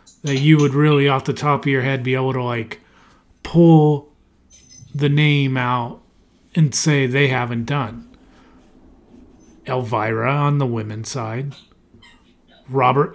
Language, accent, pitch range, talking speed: English, American, 125-150 Hz, 130 wpm